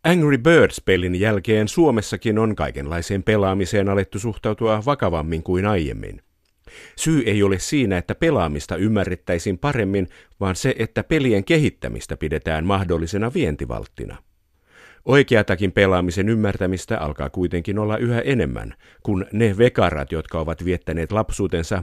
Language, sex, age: Finnish, male, 50-69